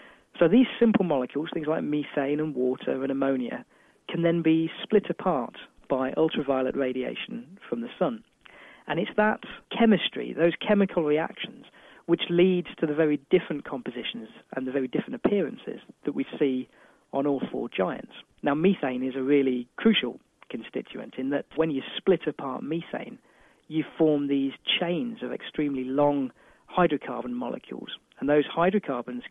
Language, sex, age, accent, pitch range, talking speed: English, male, 40-59, British, 135-180 Hz, 150 wpm